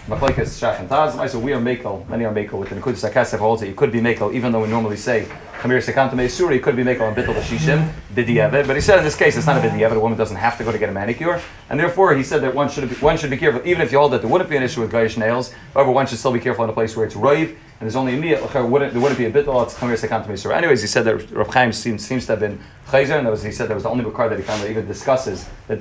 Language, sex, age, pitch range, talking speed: English, male, 30-49, 110-135 Hz, 285 wpm